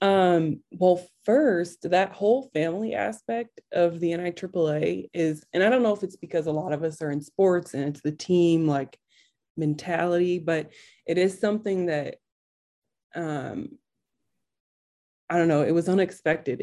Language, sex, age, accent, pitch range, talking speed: English, female, 20-39, American, 150-175 Hz, 155 wpm